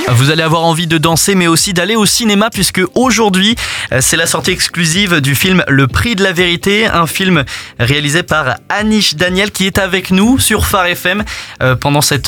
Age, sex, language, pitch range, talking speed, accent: 20-39, male, French, 140-185 Hz, 190 wpm, French